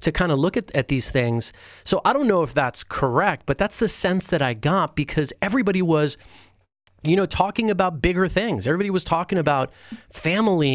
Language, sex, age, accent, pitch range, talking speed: English, male, 30-49, American, 125-175 Hz, 200 wpm